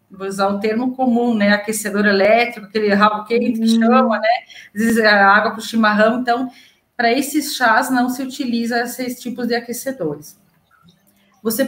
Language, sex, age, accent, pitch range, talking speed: Portuguese, female, 30-49, Brazilian, 205-270 Hz, 175 wpm